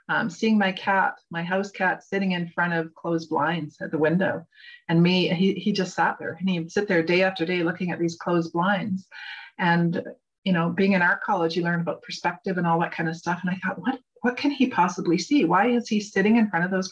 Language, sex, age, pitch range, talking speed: English, female, 40-59, 170-205 Hz, 250 wpm